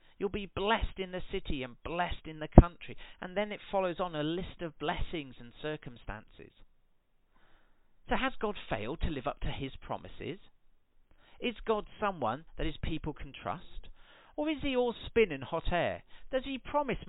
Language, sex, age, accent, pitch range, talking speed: English, male, 40-59, British, 135-205 Hz, 180 wpm